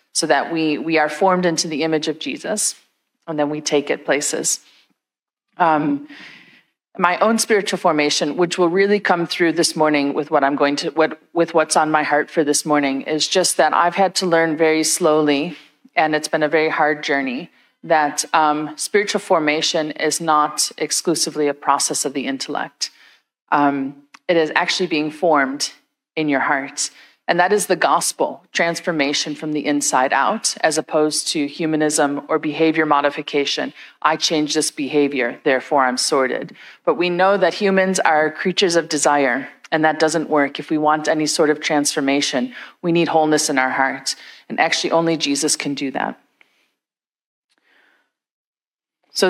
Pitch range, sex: 150-170 Hz, female